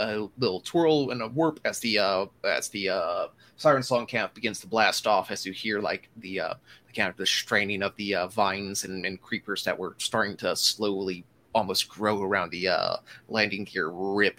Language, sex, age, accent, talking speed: English, male, 30-49, American, 210 wpm